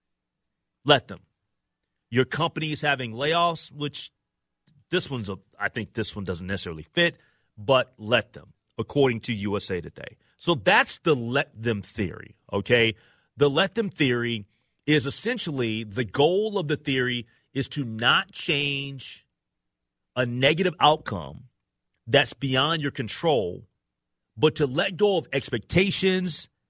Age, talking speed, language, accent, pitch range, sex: 40-59, 135 wpm, English, American, 105-150 Hz, male